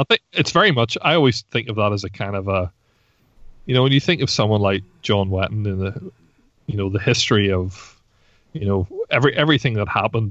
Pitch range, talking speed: 95-115 Hz, 220 wpm